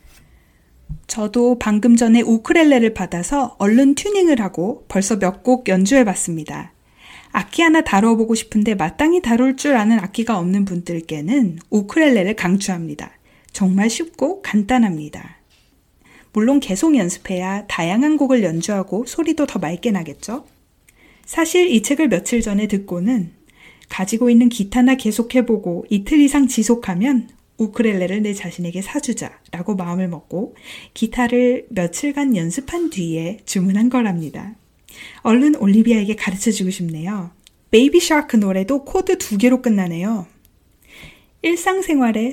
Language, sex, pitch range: Korean, female, 190-265 Hz